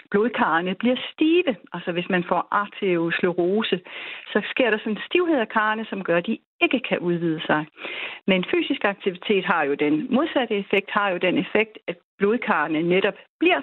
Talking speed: 175 wpm